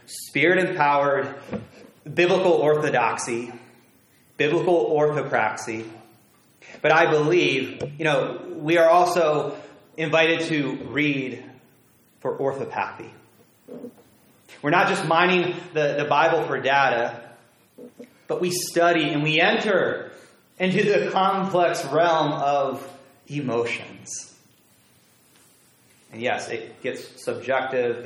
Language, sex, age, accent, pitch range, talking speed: English, male, 30-49, American, 140-170 Hz, 95 wpm